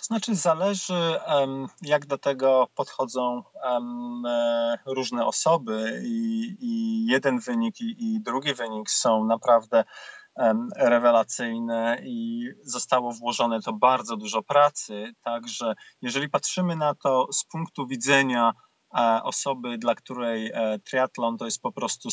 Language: Polish